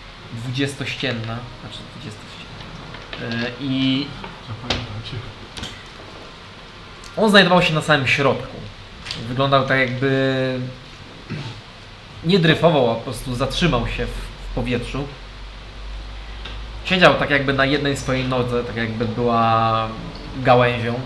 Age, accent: 20-39, native